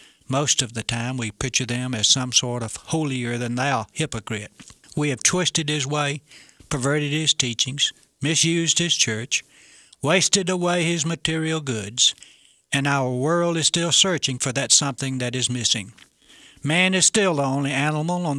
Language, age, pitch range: English, 60-79, 120-155 Hz